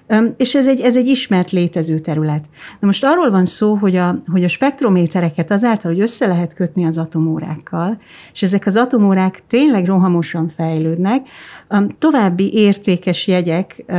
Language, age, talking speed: Hungarian, 30-49, 150 wpm